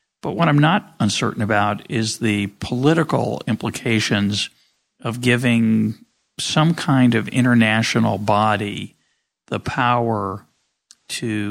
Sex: male